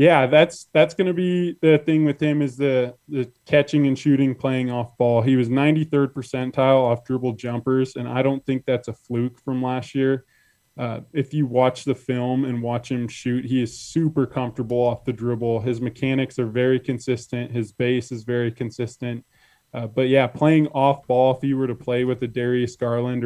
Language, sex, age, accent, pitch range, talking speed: English, male, 20-39, American, 120-135 Hz, 200 wpm